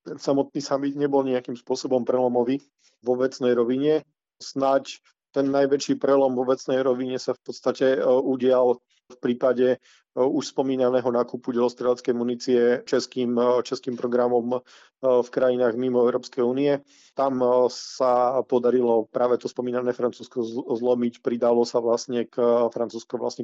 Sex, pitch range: male, 120-130 Hz